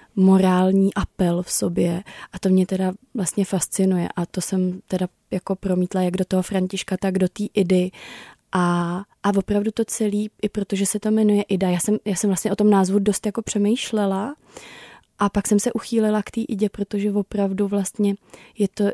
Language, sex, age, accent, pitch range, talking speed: Czech, female, 20-39, native, 185-205 Hz, 185 wpm